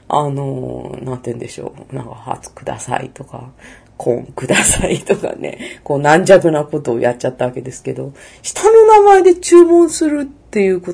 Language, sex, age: Japanese, female, 30-49